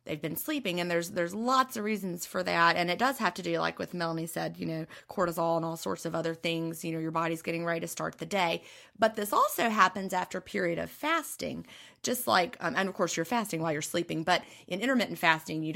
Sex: female